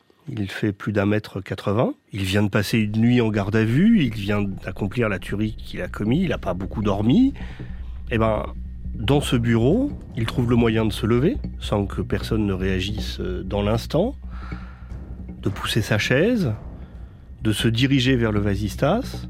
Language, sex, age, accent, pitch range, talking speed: French, male, 30-49, French, 100-120 Hz, 180 wpm